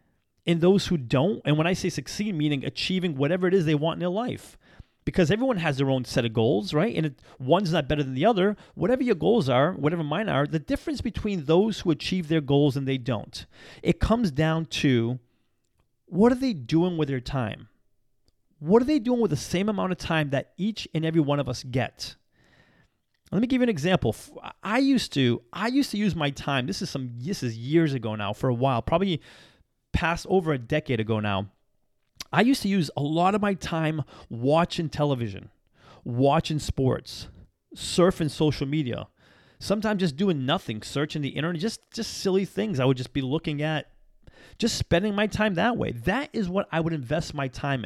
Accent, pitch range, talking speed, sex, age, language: American, 135-190 Hz, 205 wpm, male, 30-49, English